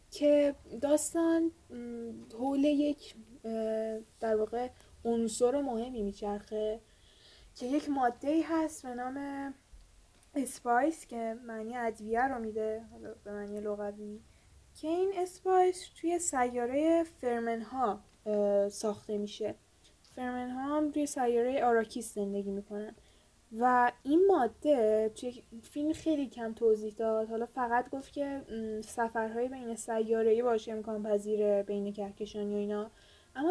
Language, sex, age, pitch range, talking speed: Persian, female, 10-29, 215-255 Hz, 115 wpm